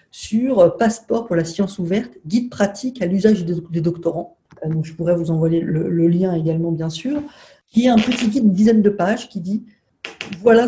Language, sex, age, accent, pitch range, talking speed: French, female, 50-69, French, 175-215 Hz, 200 wpm